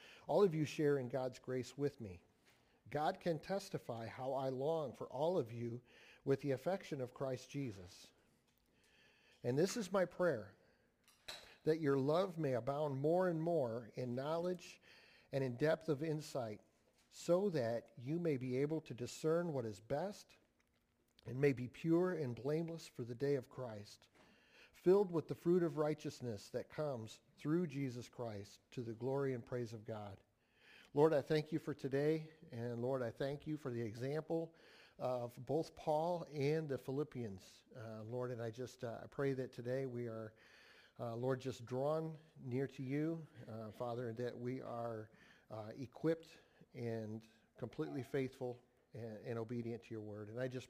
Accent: American